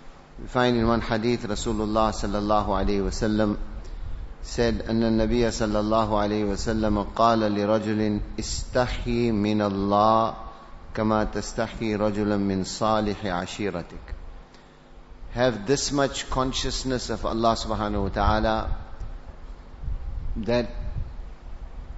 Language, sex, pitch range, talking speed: English, male, 95-115 Hz, 100 wpm